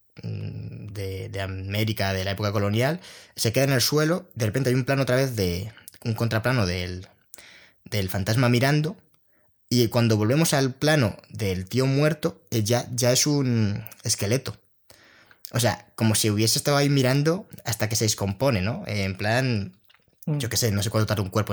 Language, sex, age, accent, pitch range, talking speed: Spanish, male, 20-39, Spanish, 105-130 Hz, 175 wpm